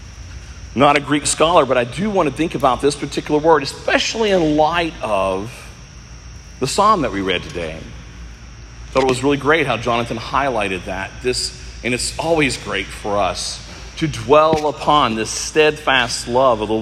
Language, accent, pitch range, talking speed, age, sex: English, American, 115-165 Hz, 175 wpm, 40-59, male